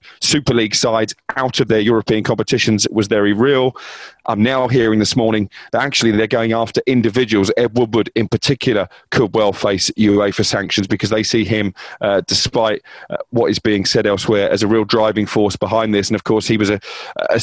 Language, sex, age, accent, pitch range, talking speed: English, male, 30-49, British, 105-120 Hz, 195 wpm